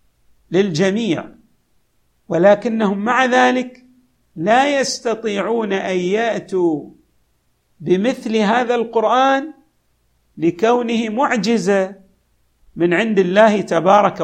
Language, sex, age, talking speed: Arabic, male, 50-69, 70 wpm